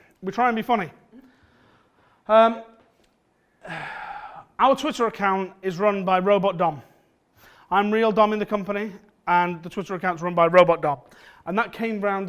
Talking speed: 155 wpm